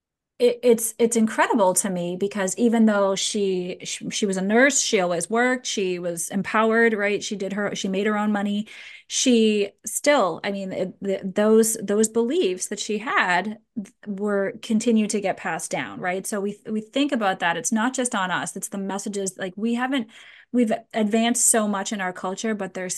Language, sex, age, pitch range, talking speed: English, female, 20-39, 190-230 Hz, 195 wpm